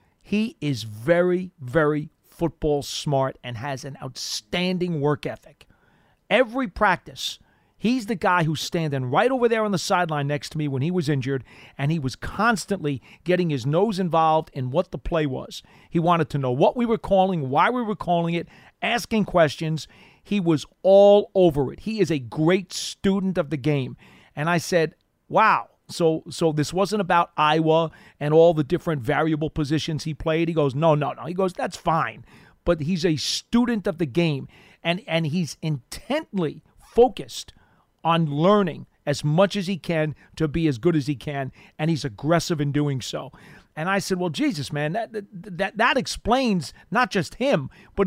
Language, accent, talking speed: English, American, 180 wpm